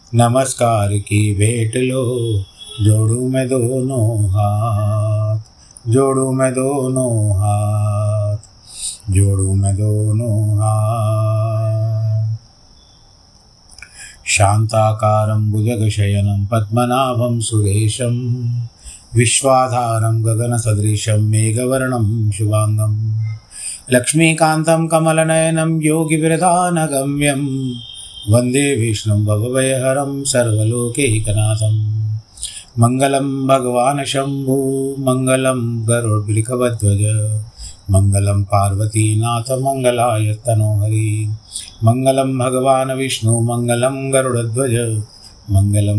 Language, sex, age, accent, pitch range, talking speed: Hindi, male, 30-49, native, 105-130 Hz, 60 wpm